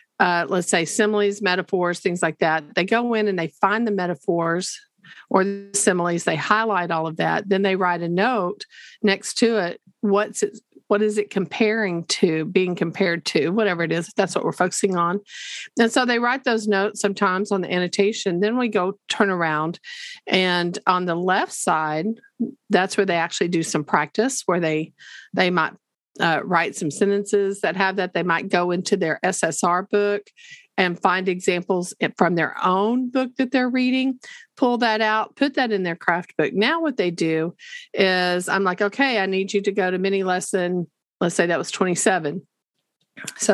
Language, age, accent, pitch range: English, 50-69, American, 175-220 Hz